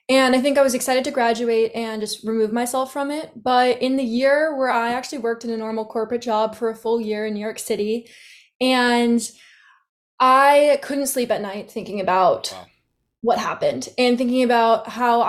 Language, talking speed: English, 190 wpm